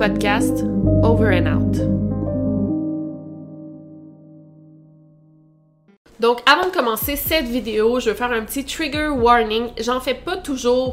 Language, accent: French, Canadian